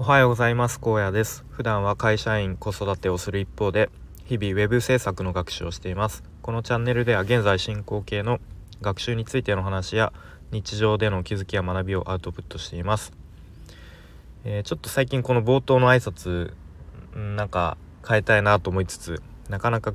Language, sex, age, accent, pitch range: Japanese, male, 20-39, native, 85-110 Hz